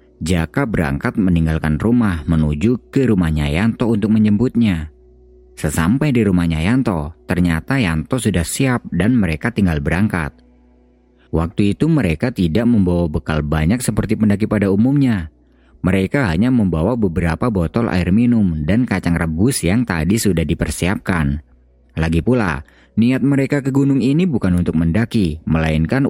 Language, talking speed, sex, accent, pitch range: Indonesian, 135 wpm, male, native, 80-115 Hz